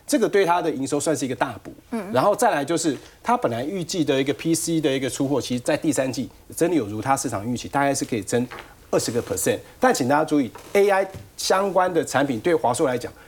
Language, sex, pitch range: Chinese, male, 125-185 Hz